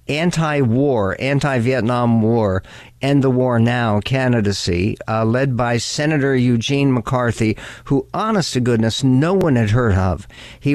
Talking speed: 135 wpm